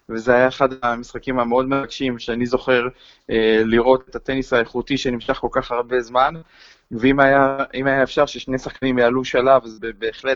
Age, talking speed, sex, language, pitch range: 20-39, 160 wpm, male, Hebrew, 115-130 Hz